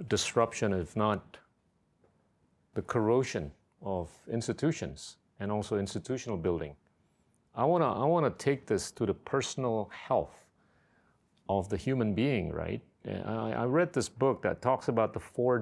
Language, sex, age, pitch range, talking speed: Indonesian, male, 40-59, 105-130 Hz, 145 wpm